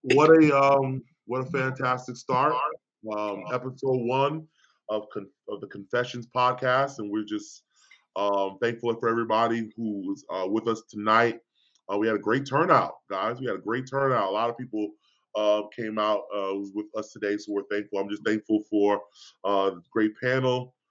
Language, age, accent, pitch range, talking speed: English, 20-39, American, 105-130 Hz, 185 wpm